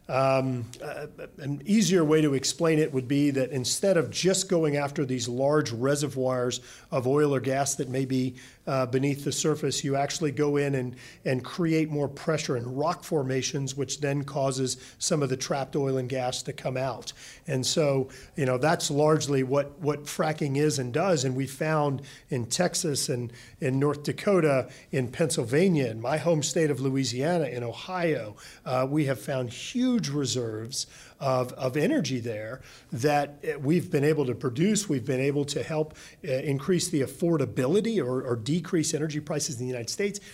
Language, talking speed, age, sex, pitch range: English, 180 wpm, 40-59, male, 135-170 Hz